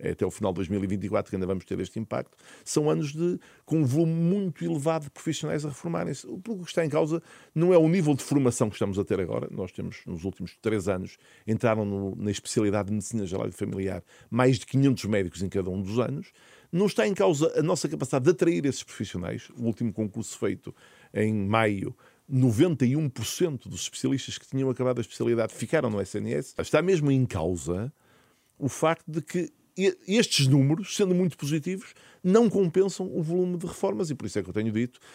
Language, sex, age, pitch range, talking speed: Portuguese, male, 50-69, 105-155 Hz, 200 wpm